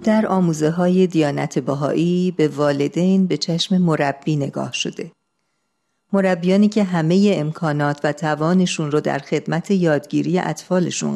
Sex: female